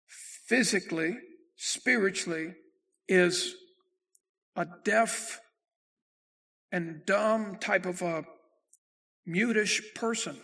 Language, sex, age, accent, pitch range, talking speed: English, male, 60-79, American, 165-230 Hz, 70 wpm